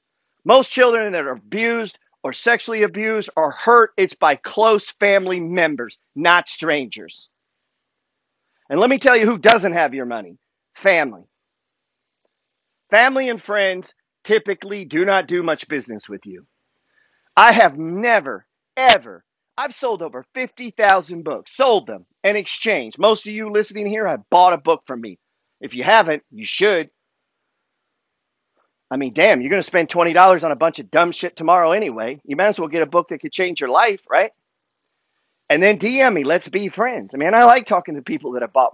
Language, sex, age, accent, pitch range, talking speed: English, male, 40-59, American, 170-245 Hz, 175 wpm